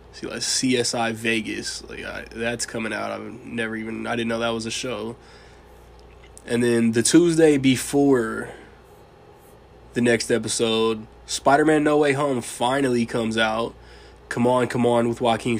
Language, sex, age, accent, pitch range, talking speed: English, male, 20-39, American, 115-130 Hz, 150 wpm